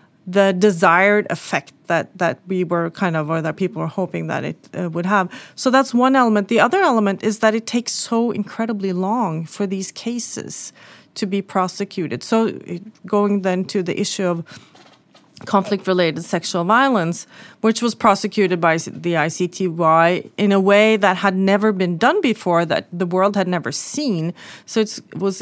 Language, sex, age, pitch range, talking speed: English, female, 30-49, 180-220 Hz, 170 wpm